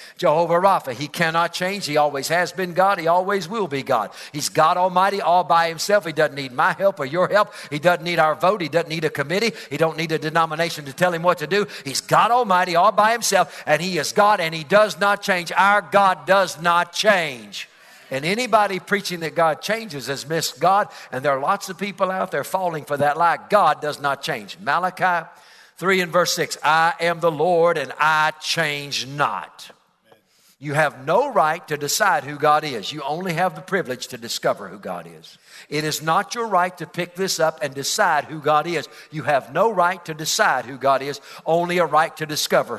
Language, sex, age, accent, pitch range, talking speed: English, male, 60-79, American, 150-185 Hz, 215 wpm